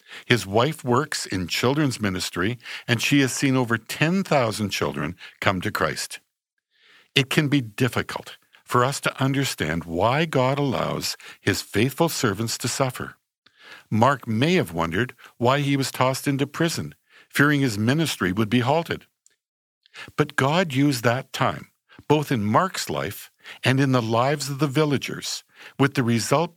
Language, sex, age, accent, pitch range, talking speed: English, male, 60-79, American, 110-140 Hz, 150 wpm